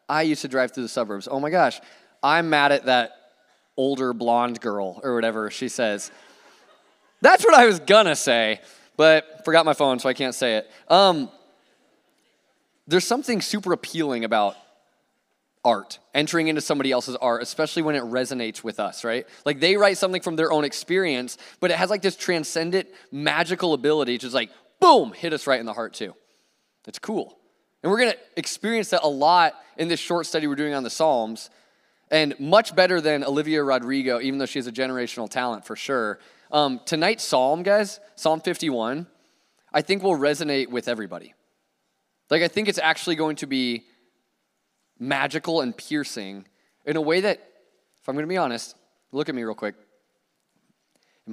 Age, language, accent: 20-39, English, American